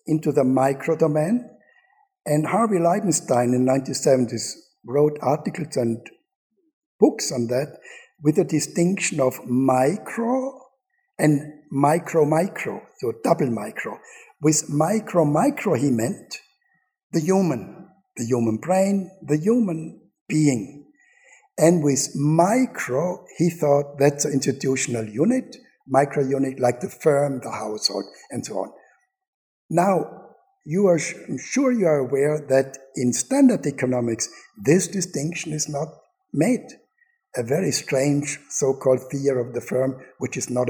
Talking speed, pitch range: 125 wpm, 130-200 Hz